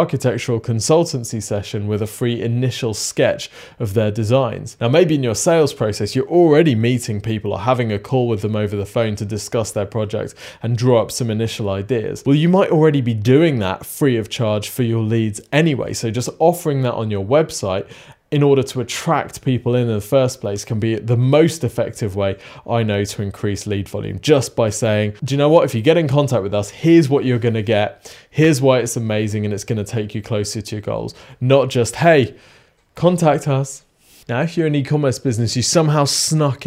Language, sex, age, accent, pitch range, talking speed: English, male, 20-39, British, 110-140 Hz, 210 wpm